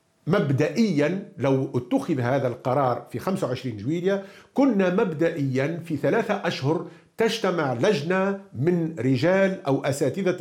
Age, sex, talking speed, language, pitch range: 50-69, male, 110 wpm, Arabic, 145-200 Hz